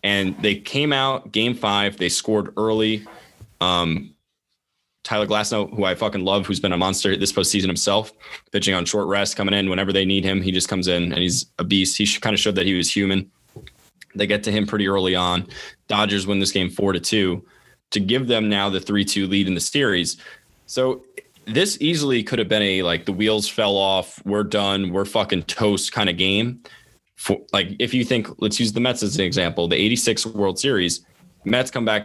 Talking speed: 210 wpm